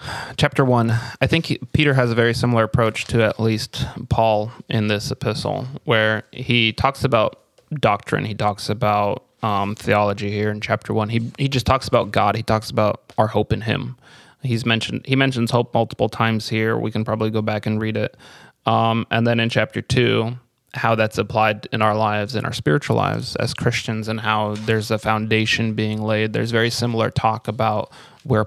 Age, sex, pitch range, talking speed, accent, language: 20-39, male, 110-125 Hz, 195 wpm, American, English